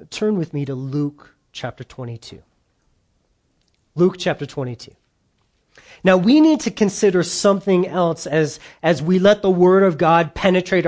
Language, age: English, 40-59